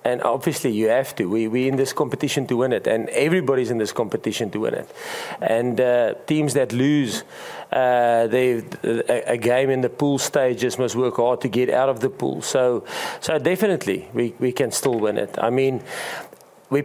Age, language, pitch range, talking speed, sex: 40-59, English, 125-145 Hz, 195 wpm, male